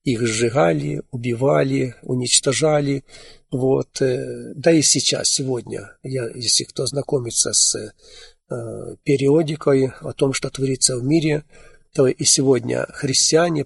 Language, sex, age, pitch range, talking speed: Russian, male, 50-69, 130-150 Hz, 115 wpm